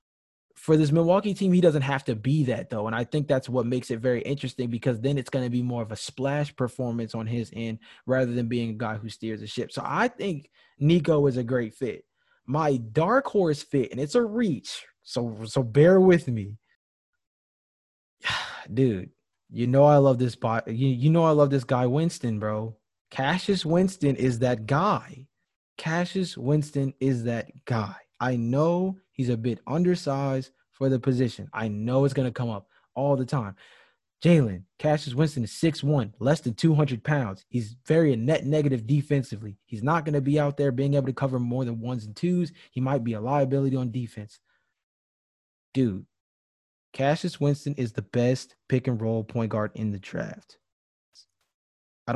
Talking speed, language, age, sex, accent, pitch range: 180 wpm, English, 20-39, male, American, 115-150 Hz